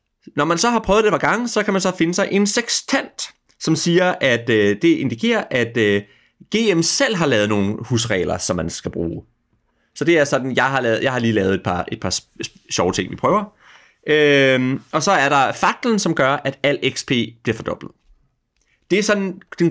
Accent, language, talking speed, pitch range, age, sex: native, Danish, 215 wpm, 115-175 Hz, 30-49, male